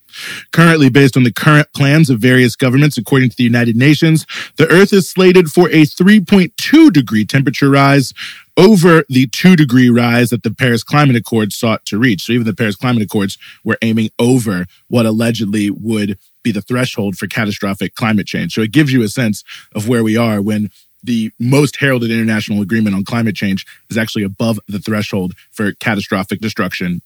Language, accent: English, American